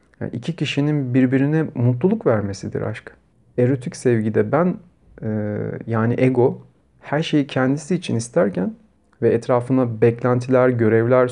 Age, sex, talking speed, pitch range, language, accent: 40-59, male, 115 wpm, 115-150 Hz, Turkish, native